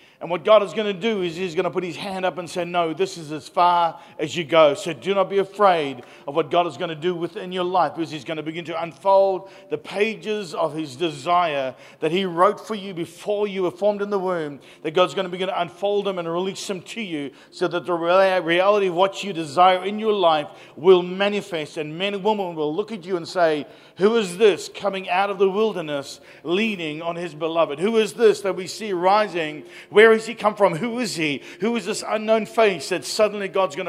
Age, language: 50-69, English